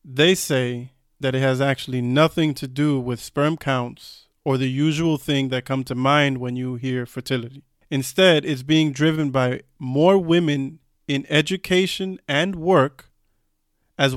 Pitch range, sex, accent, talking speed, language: 130-160 Hz, male, American, 155 wpm, English